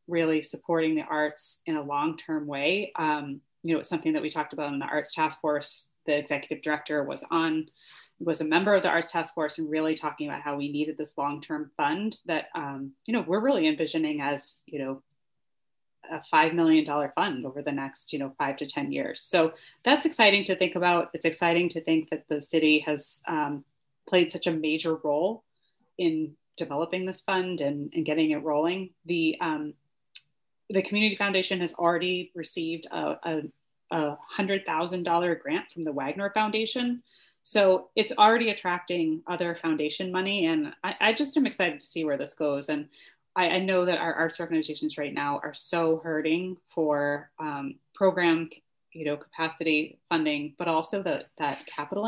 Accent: American